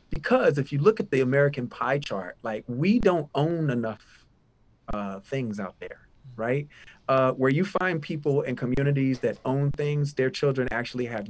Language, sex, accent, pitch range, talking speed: English, male, American, 120-145 Hz, 175 wpm